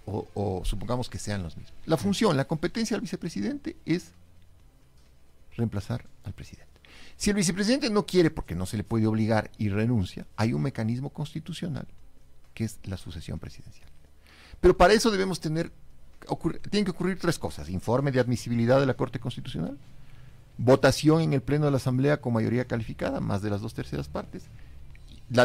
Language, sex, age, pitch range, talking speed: Spanish, male, 50-69, 95-145 Hz, 170 wpm